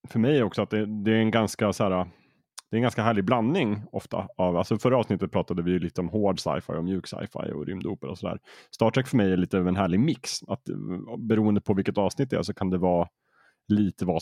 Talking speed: 235 wpm